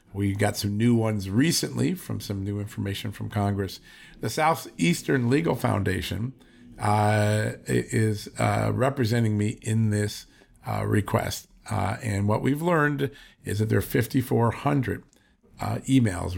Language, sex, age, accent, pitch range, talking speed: English, male, 50-69, American, 100-120 Hz, 130 wpm